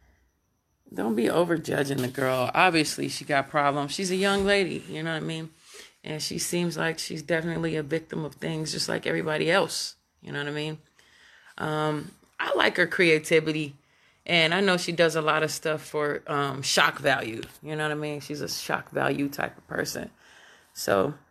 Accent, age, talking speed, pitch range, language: American, 30-49, 195 wpm, 145-170 Hz, English